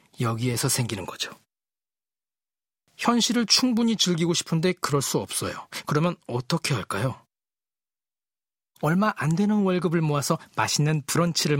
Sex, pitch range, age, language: male, 130-180 Hz, 40-59, Korean